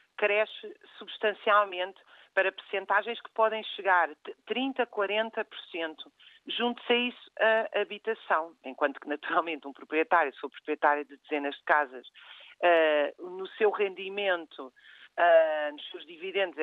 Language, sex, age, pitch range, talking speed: Portuguese, female, 40-59, 170-220 Hz, 125 wpm